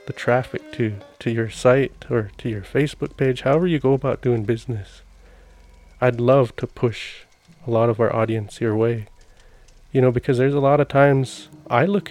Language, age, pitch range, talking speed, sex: English, 20-39, 115-140 Hz, 185 wpm, male